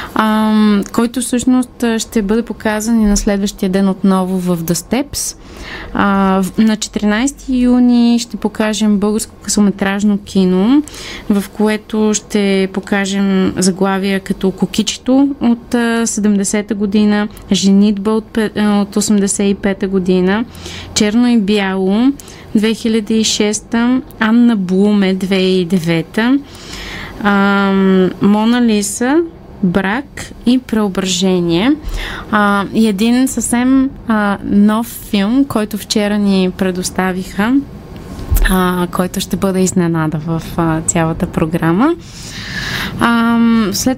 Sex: female